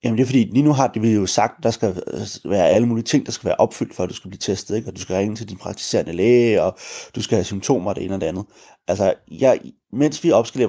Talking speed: 300 wpm